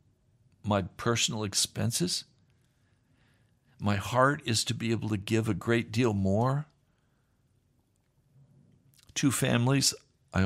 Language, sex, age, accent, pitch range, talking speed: English, male, 60-79, American, 105-155 Hz, 105 wpm